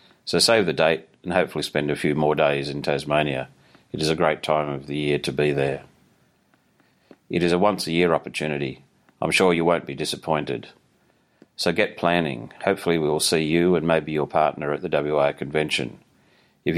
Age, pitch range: 40-59, 75-80 Hz